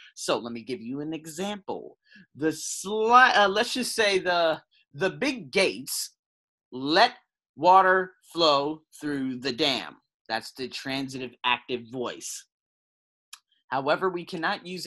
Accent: American